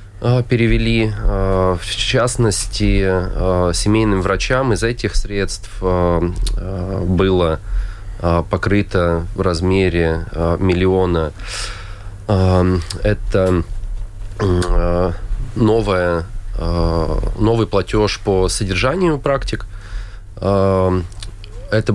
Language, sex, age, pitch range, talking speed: Russian, male, 20-39, 90-105 Hz, 55 wpm